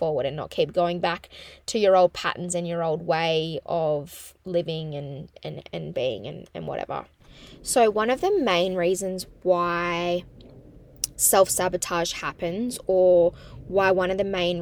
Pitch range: 170-190 Hz